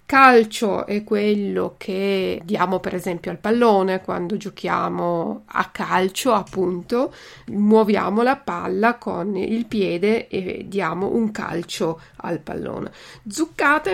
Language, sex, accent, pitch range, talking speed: Italian, female, native, 185-225 Hz, 115 wpm